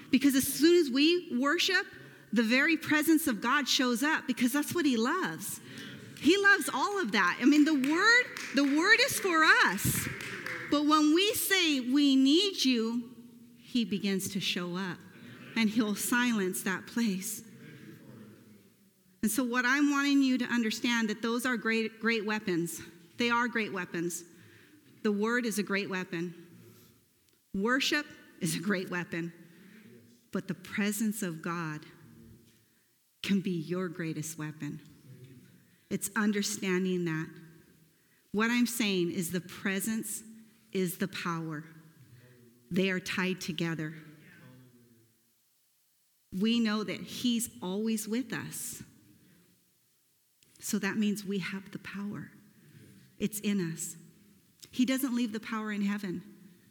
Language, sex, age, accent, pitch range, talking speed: English, female, 40-59, American, 175-250 Hz, 135 wpm